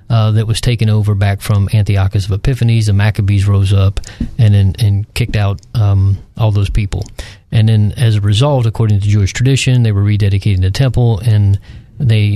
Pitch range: 100-115 Hz